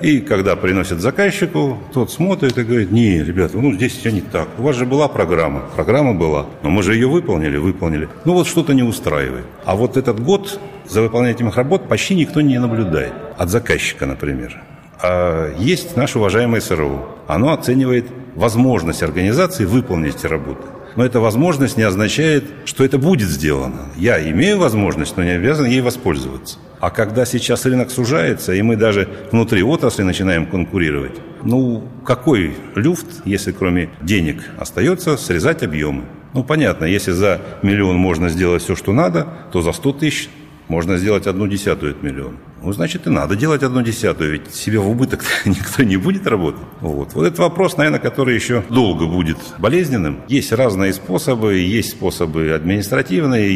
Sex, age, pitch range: male, 60-79, 95-135 Hz